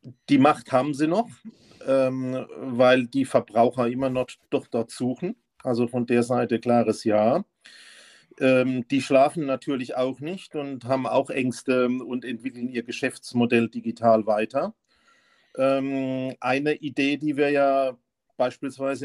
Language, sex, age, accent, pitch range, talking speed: German, male, 40-59, German, 120-145 Hz, 135 wpm